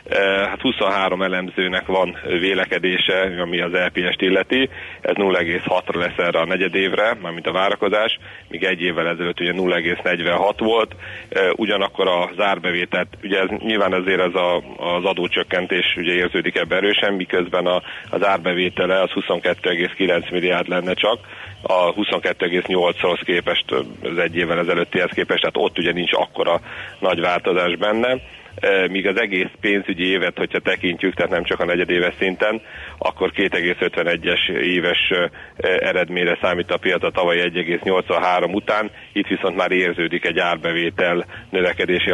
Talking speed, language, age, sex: 135 wpm, Hungarian, 40-59, male